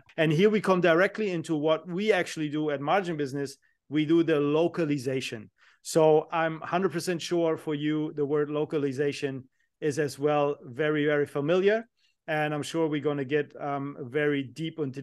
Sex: male